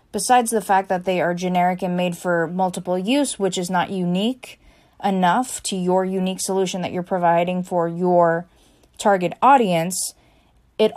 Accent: American